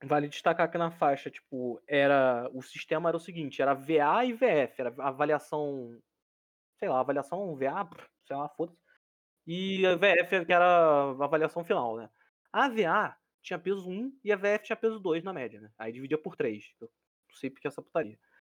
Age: 20-39